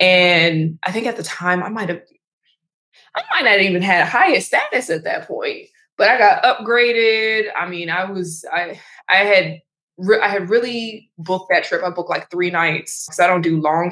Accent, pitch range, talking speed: American, 170-200 Hz, 205 wpm